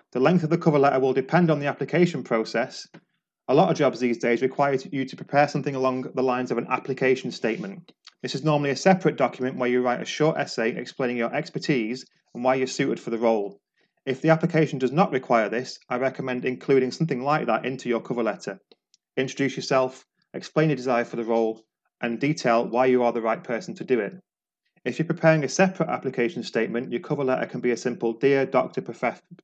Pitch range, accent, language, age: 120-150 Hz, British, English, 30-49